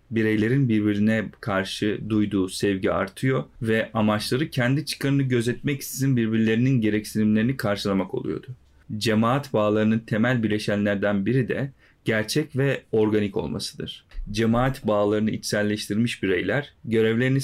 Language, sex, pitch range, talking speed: Turkish, male, 105-130 Hz, 105 wpm